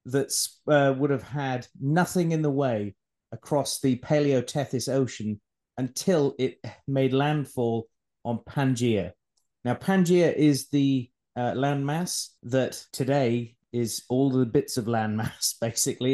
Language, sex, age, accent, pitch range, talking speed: English, male, 30-49, British, 120-145 Hz, 125 wpm